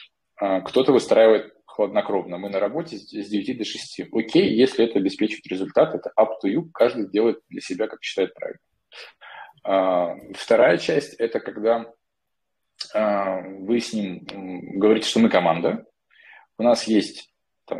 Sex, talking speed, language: male, 135 wpm, Russian